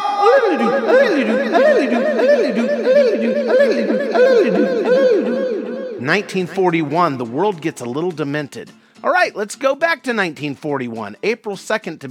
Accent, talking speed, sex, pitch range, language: American, 85 wpm, male, 155-255 Hz, English